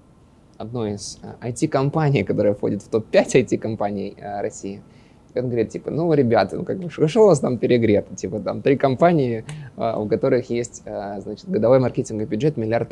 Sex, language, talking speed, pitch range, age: male, Russian, 170 wpm, 110-130 Hz, 20-39